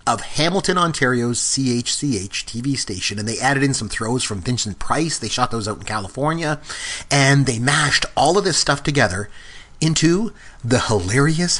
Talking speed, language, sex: 165 wpm, English, male